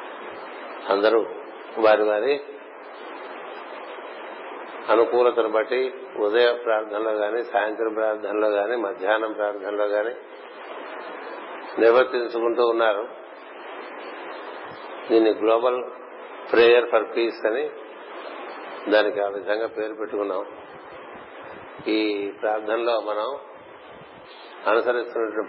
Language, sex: Telugu, male